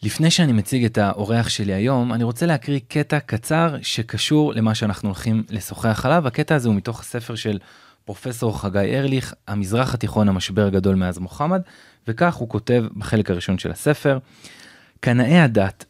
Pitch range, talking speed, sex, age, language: 100-130 Hz, 160 wpm, male, 20-39, Hebrew